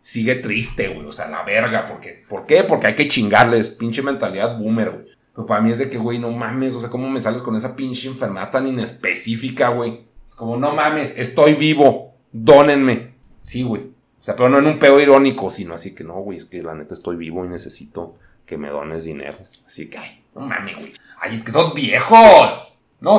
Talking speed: 225 wpm